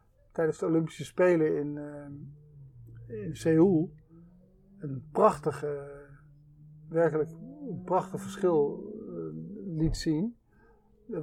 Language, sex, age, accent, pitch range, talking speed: Dutch, male, 50-69, Dutch, 150-170 Hz, 95 wpm